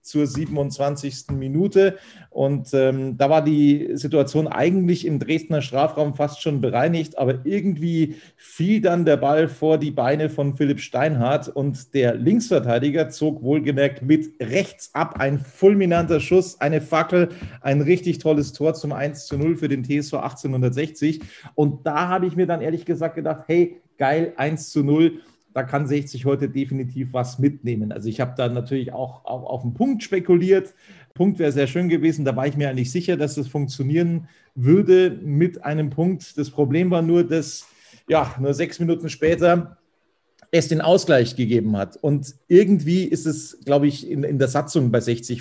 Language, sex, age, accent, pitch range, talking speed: German, male, 40-59, German, 140-170 Hz, 170 wpm